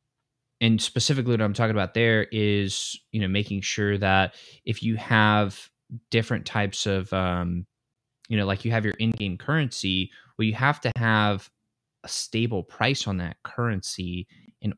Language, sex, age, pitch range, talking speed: English, male, 20-39, 100-120 Hz, 160 wpm